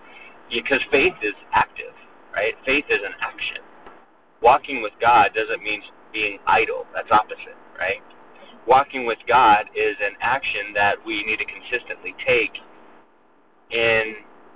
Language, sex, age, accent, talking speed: English, male, 30-49, American, 130 wpm